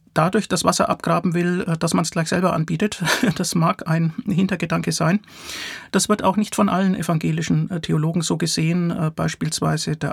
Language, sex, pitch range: German, male, 155-190 Hz